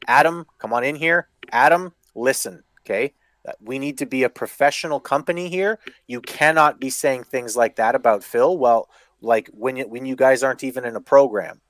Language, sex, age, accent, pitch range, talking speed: English, male, 30-49, American, 135-185 Hz, 190 wpm